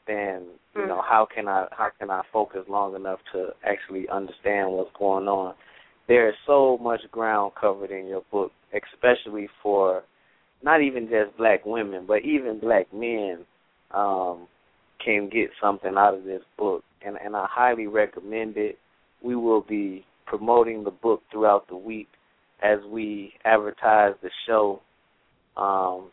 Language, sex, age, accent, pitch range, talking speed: English, male, 20-39, American, 95-110 Hz, 155 wpm